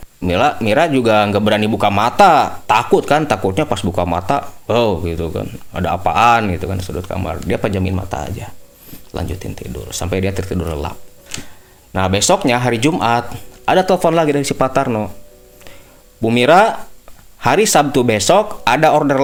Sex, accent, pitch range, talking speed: male, native, 95-155 Hz, 155 wpm